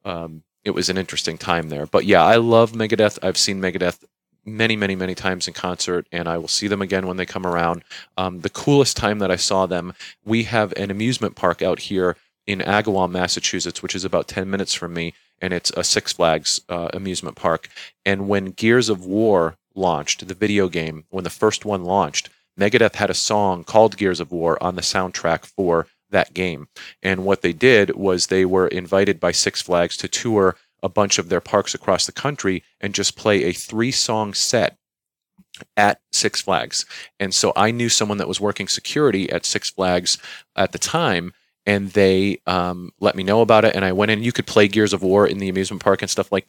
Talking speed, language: 210 wpm, English